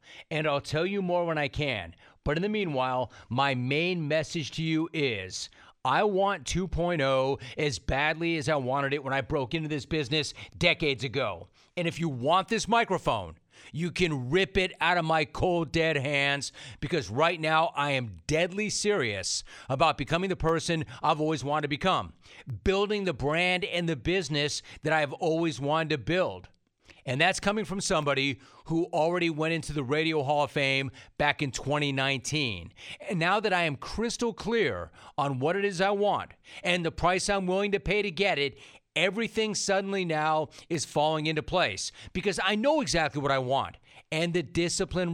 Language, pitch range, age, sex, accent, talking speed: English, 140-180 Hz, 40-59, male, American, 180 wpm